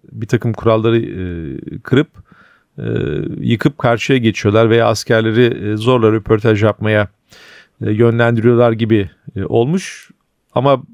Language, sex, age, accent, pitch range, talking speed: Turkish, male, 40-59, native, 115-140 Hz, 90 wpm